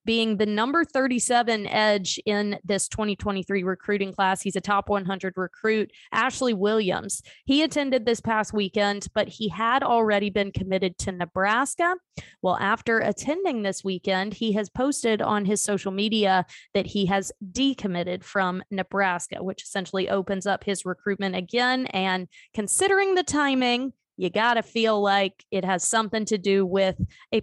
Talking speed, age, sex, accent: 155 wpm, 20-39, female, American